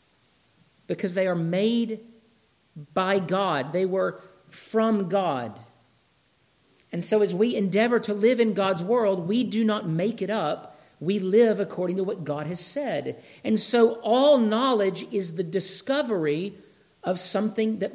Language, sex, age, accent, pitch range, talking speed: English, male, 50-69, American, 160-215 Hz, 145 wpm